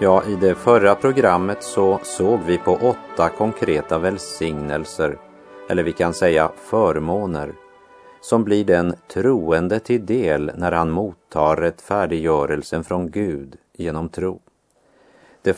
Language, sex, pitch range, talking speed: German, male, 80-100 Hz, 125 wpm